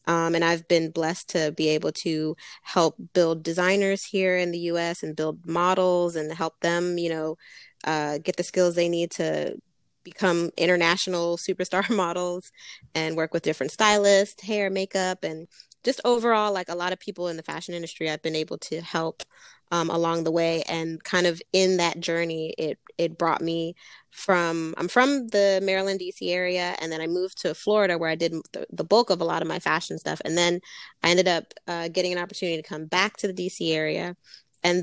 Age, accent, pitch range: 20-39, American, 165-190 Hz